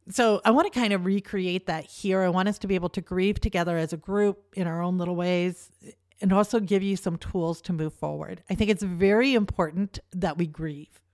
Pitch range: 155-195 Hz